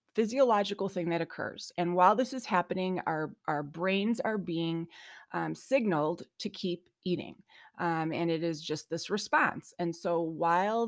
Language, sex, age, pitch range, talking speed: English, female, 30-49, 170-215 Hz, 160 wpm